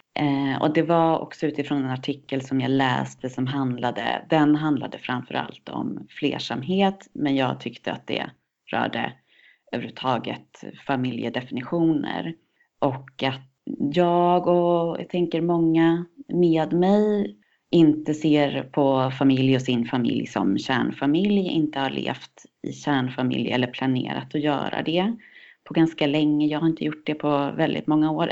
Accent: native